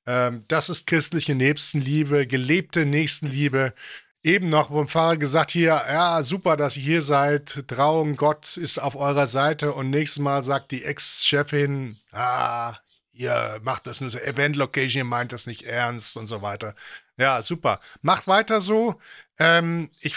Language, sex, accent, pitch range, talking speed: English, male, German, 145-180 Hz, 160 wpm